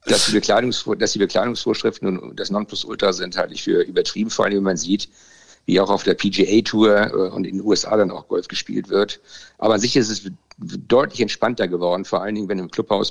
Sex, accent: male, German